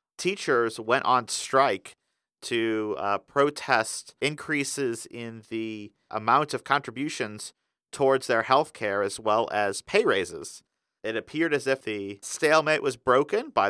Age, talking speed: 50-69, 135 wpm